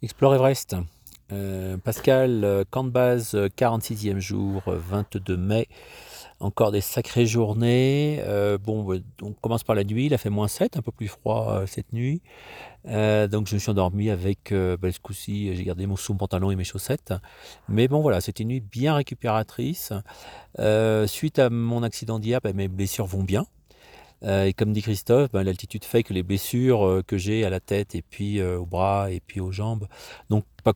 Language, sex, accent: French, male, French